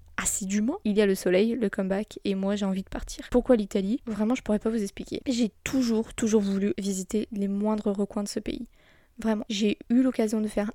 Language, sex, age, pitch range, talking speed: French, female, 20-39, 205-245 Hz, 220 wpm